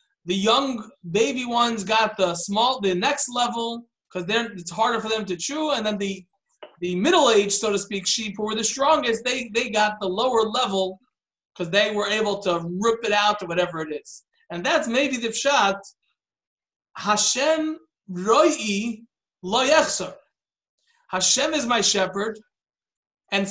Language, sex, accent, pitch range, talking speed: English, male, American, 205-270 Hz, 155 wpm